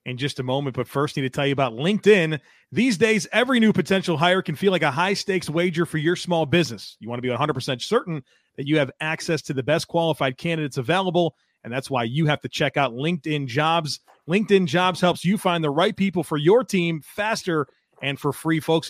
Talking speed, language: 220 wpm, English